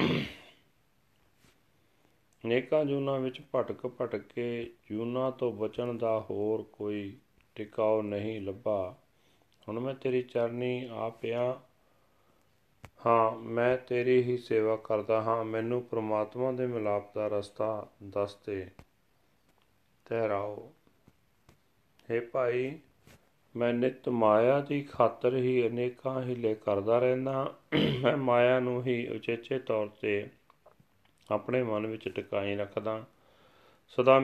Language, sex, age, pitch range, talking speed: Punjabi, male, 40-59, 105-125 Hz, 110 wpm